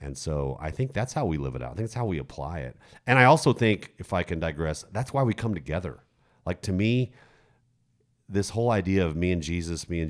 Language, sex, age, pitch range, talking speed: English, male, 40-59, 80-115 Hz, 250 wpm